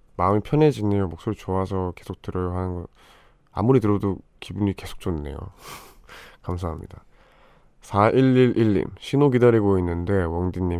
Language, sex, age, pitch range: Korean, male, 20-39, 85-105 Hz